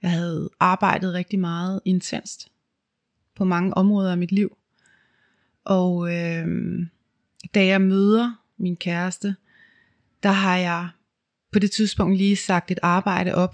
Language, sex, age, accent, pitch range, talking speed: Danish, female, 30-49, native, 170-195 Hz, 130 wpm